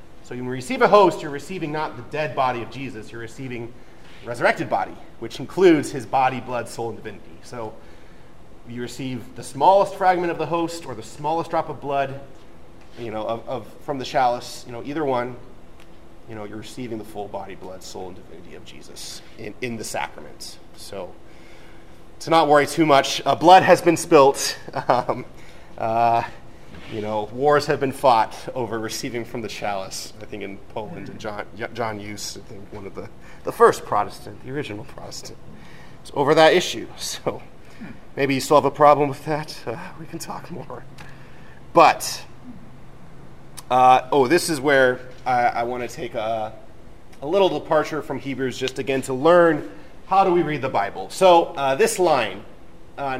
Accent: American